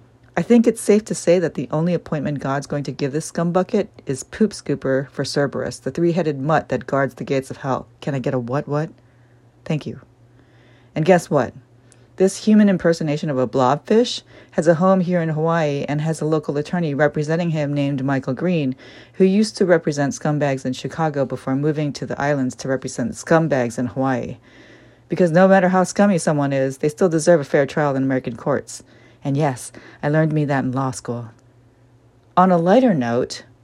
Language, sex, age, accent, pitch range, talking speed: English, female, 40-59, American, 130-175 Hz, 195 wpm